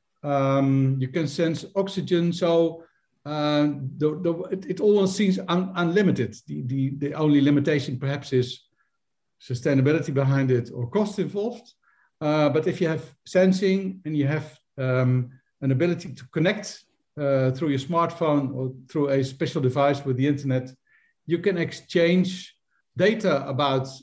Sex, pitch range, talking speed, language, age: male, 135-170 Hz, 135 wpm, English, 60-79